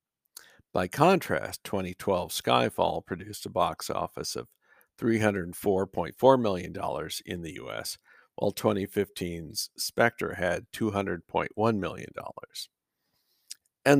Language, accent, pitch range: English, American, 95-115 Hz